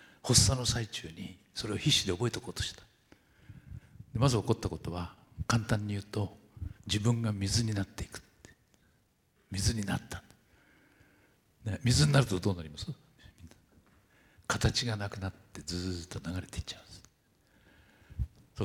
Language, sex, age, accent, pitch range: Japanese, male, 60-79, native, 100-130 Hz